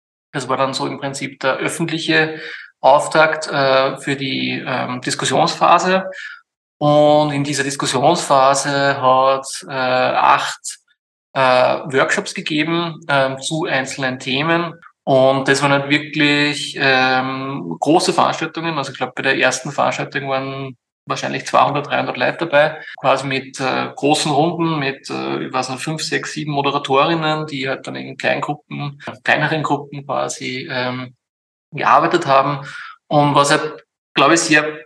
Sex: male